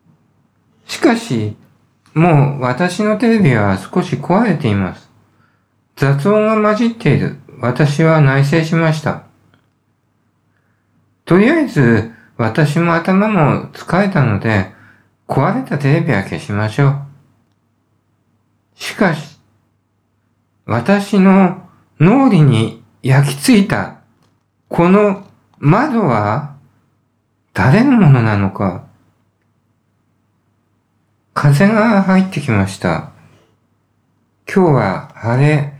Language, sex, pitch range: Japanese, male, 110-160 Hz